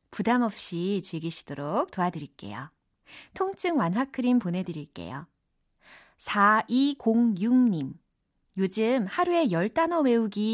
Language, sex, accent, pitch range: Korean, female, native, 175-280 Hz